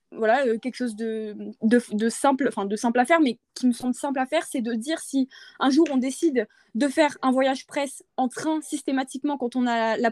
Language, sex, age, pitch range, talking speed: French, female, 20-39, 235-290 Hz, 245 wpm